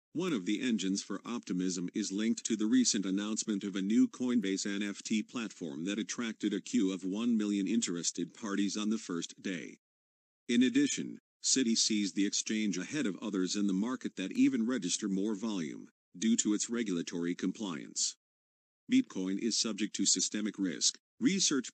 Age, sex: 50-69, male